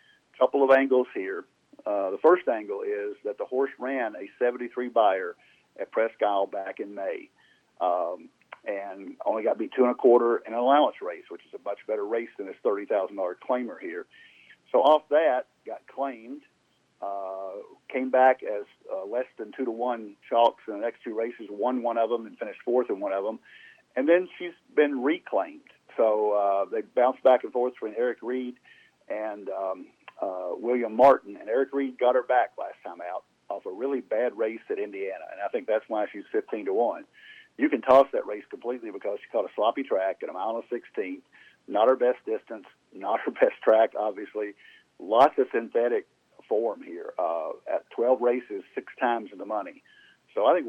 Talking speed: 200 wpm